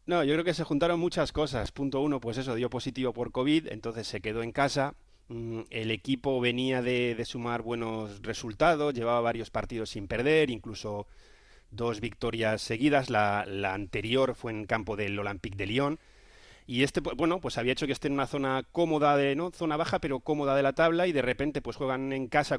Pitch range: 110-135 Hz